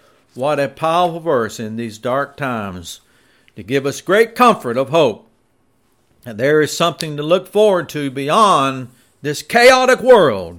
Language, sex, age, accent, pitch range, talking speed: English, male, 60-79, American, 100-165 Hz, 155 wpm